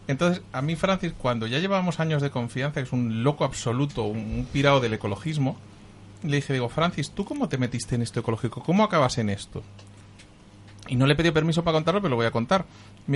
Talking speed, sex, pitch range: 215 wpm, male, 115-160 Hz